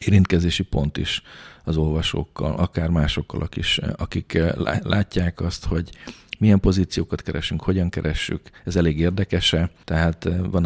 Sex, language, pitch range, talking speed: male, Hungarian, 75-90 Hz, 125 wpm